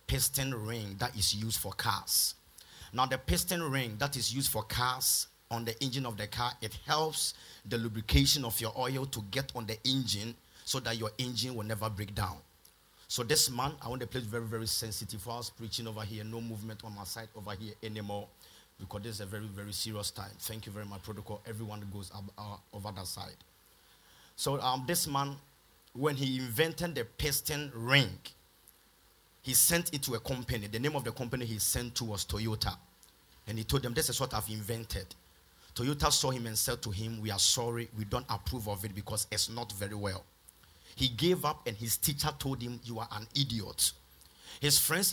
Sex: male